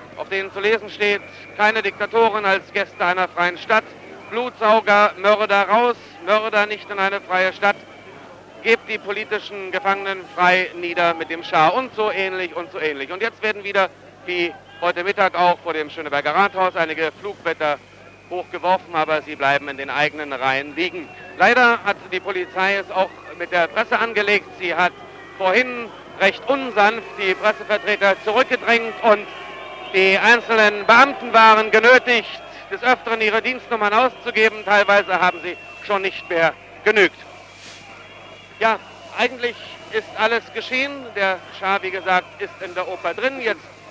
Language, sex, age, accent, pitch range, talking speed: German, male, 50-69, German, 175-215 Hz, 150 wpm